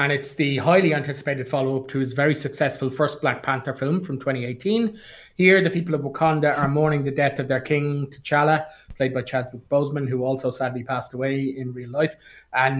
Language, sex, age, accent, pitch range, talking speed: English, male, 30-49, Irish, 130-155 Hz, 195 wpm